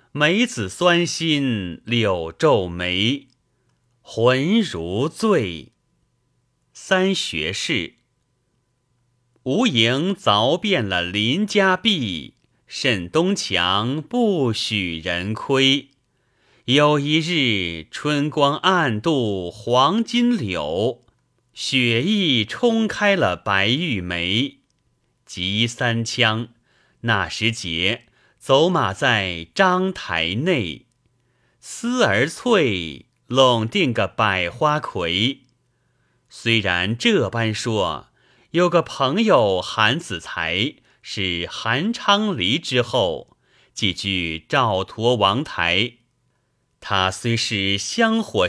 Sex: male